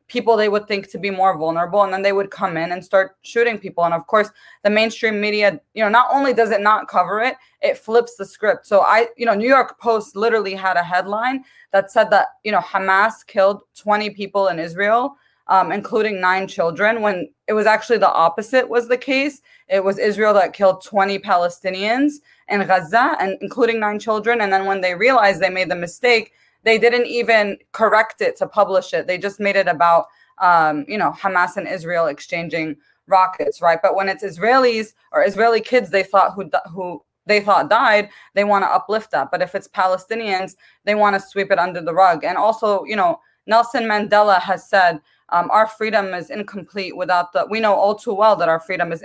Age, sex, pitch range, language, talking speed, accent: 20-39, female, 185-220 Hz, English, 205 wpm, American